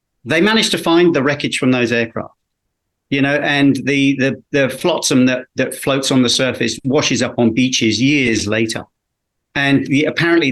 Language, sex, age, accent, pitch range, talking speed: English, male, 40-59, British, 110-140 Hz, 175 wpm